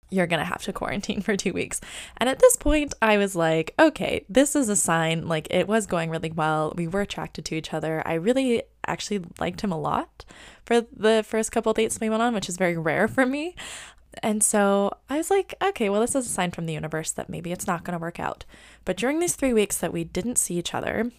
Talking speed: 245 wpm